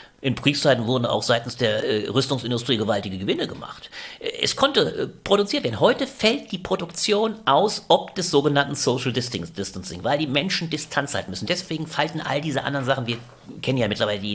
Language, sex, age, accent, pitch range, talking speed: German, male, 40-59, German, 120-165 Hz, 170 wpm